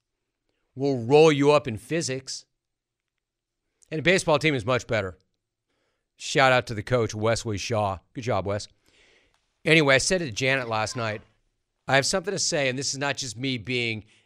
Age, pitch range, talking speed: 40-59, 115-180 Hz, 175 wpm